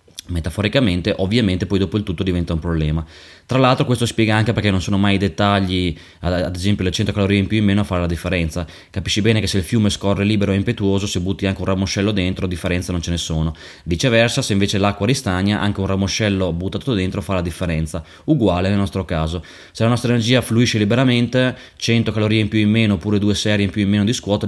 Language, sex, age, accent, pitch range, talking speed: Italian, male, 20-39, native, 95-110 Hz, 225 wpm